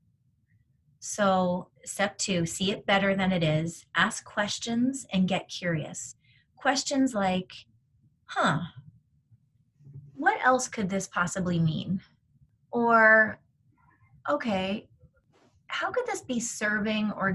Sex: female